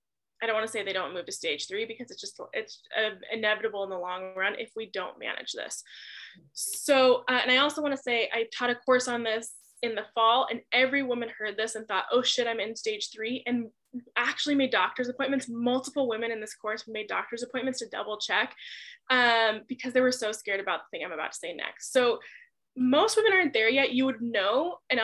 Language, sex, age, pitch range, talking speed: English, female, 10-29, 220-275 Hz, 230 wpm